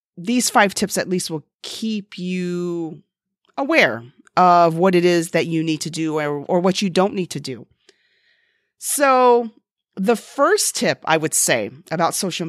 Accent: American